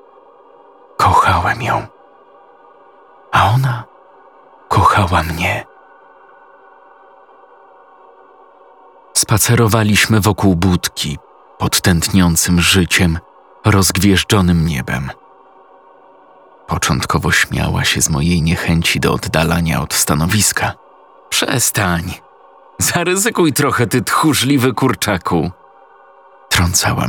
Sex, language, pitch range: male, Polish, 90-130 Hz